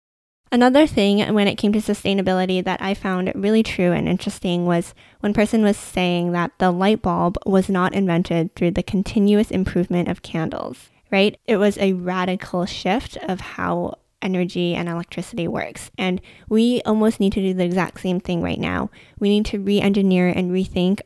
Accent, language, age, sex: American, English, 10-29, female